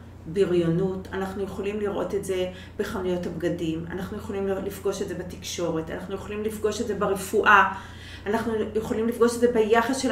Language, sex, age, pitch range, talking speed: Hebrew, female, 30-49, 180-245 Hz, 160 wpm